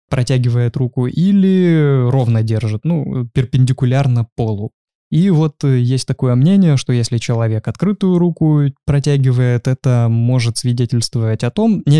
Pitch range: 120-150 Hz